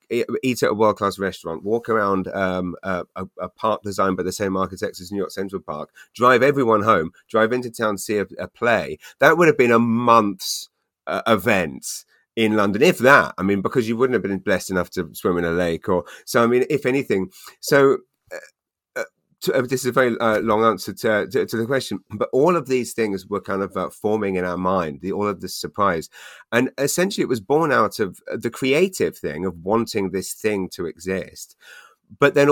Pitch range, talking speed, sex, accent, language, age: 95-115 Hz, 205 wpm, male, British, English, 30-49